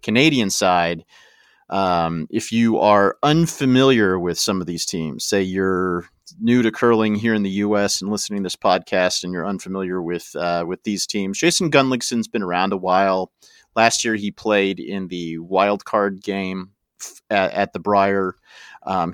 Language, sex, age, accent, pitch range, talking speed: English, male, 40-59, American, 90-115 Hz, 170 wpm